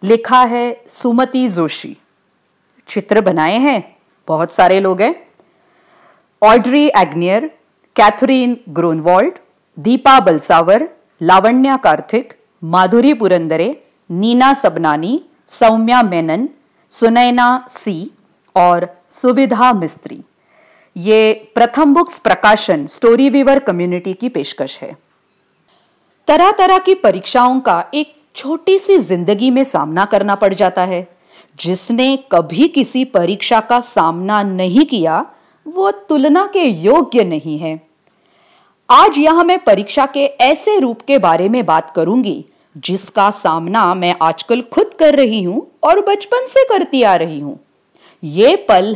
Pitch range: 185-285 Hz